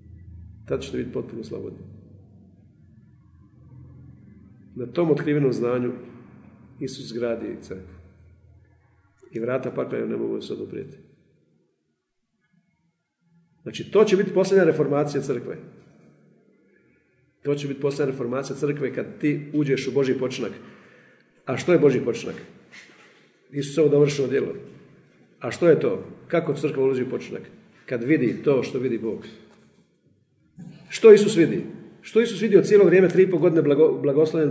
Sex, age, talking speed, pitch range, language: male, 50-69, 130 wpm, 125-185 Hz, Croatian